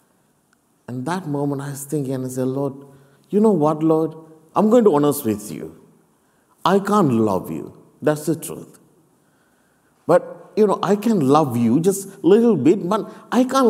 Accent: Indian